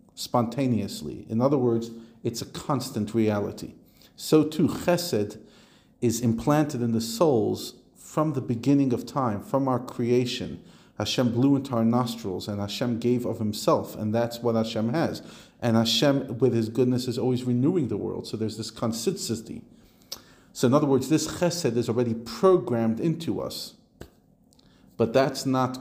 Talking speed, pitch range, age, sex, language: 155 wpm, 115-140 Hz, 40-59, male, English